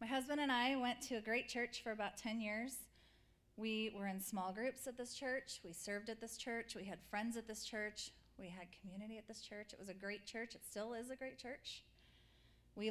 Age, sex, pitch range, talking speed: 30-49, female, 200-250 Hz, 230 wpm